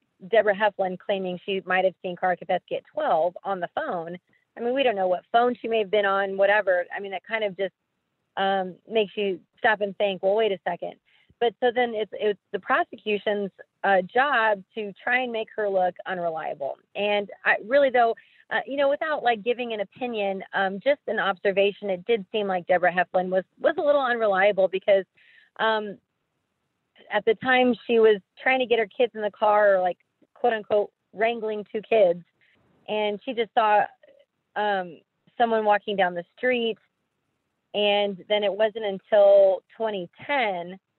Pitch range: 190-225 Hz